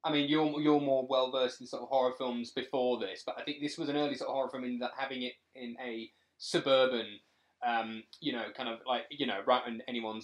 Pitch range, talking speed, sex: 115-135 Hz, 245 wpm, male